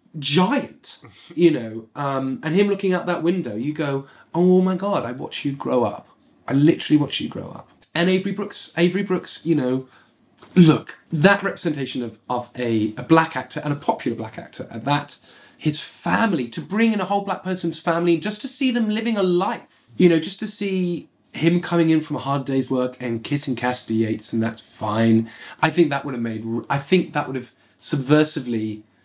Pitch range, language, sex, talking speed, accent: 120-170 Hz, English, male, 200 wpm, British